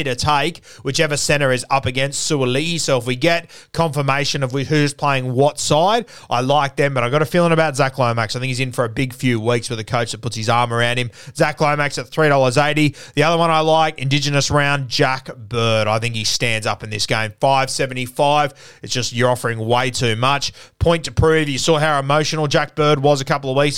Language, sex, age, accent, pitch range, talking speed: English, male, 30-49, Australian, 125-155 Hz, 240 wpm